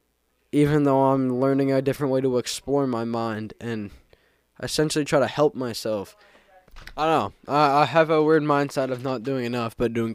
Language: English